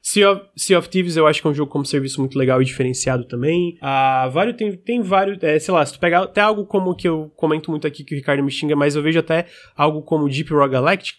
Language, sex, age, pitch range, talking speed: Portuguese, male, 20-39, 145-190 Hz, 275 wpm